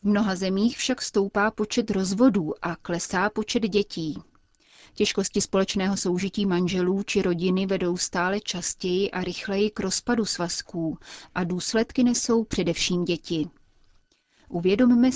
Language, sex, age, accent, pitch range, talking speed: Czech, female, 30-49, native, 175-215 Hz, 125 wpm